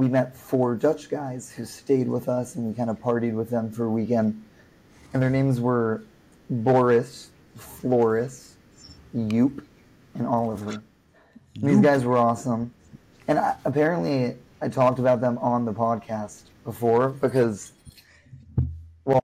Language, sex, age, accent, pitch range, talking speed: English, male, 30-49, American, 115-130 Hz, 140 wpm